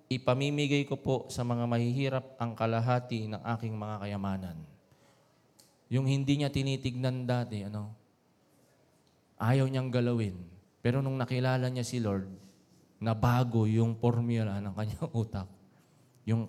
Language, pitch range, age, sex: Filipino, 105-130 Hz, 20-39, male